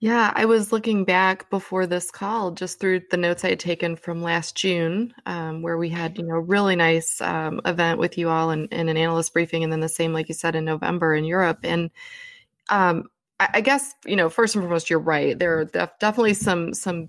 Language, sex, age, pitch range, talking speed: English, female, 20-39, 170-200 Hz, 220 wpm